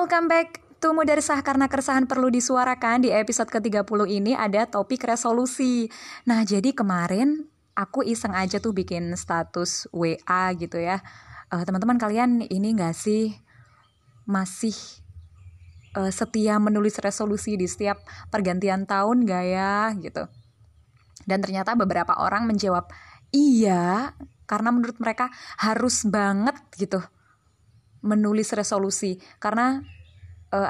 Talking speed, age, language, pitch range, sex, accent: 120 wpm, 20-39, Indonesian, 180-230 Hz, female, native